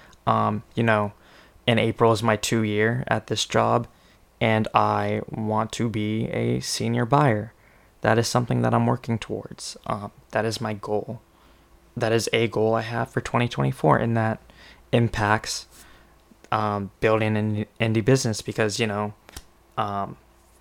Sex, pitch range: male, 100-115 Hz